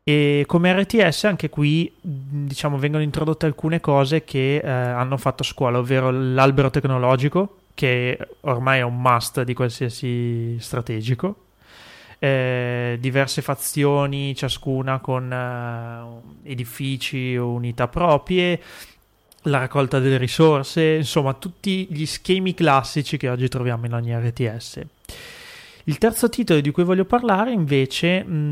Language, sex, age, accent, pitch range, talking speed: Italian, male, 30-49, native, 125-155 Hz, 125 wpm